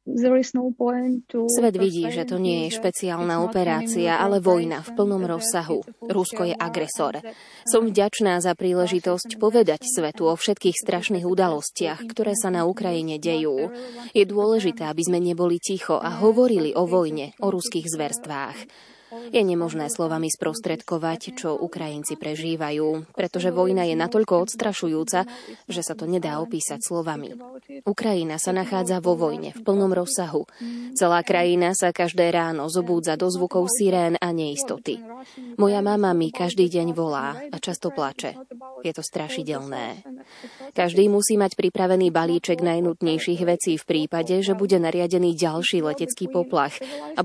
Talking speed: 140 wpm